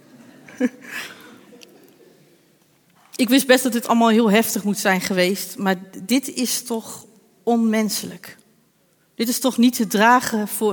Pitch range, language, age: 210-265 Hz, Dutch, 40-59